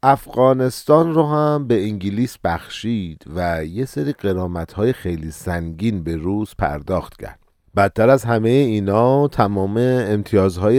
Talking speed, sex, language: 130 wpm, male, Persian